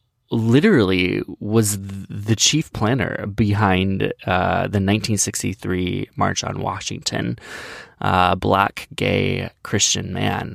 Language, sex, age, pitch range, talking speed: English, male, 20-39, 95-125 Hz, 95 wpm